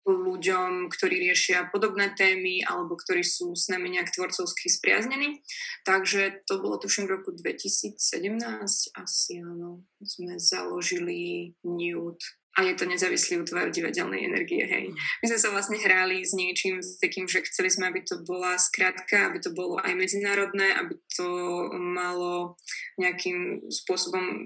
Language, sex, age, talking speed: Slovak, female, 20-39, 140 wpm